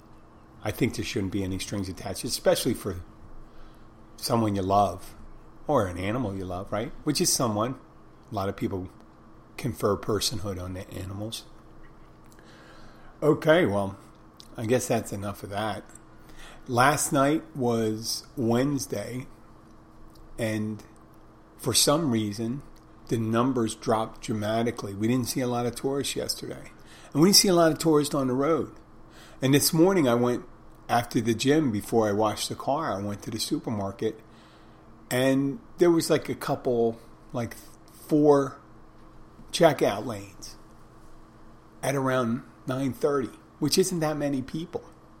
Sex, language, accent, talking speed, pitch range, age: male, English, American, 140 wpm, 110-135 Hz, 40-59